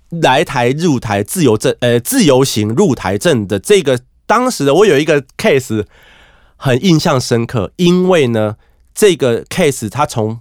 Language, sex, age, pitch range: Chinese, male, 30-49, 105-160 Hz